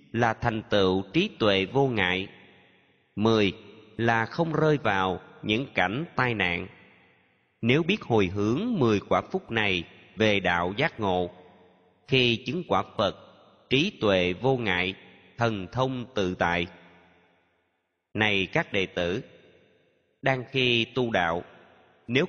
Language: Vietnamese